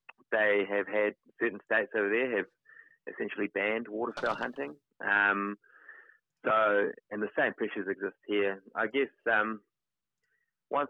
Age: 20-39